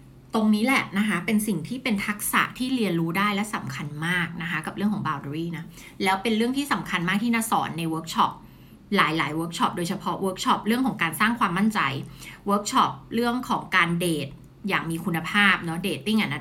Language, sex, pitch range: Thai, female, 170-225 Hz